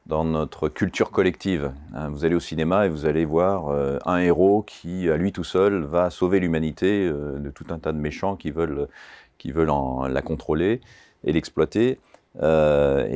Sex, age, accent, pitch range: male, 40-59, French, 75-90 Hz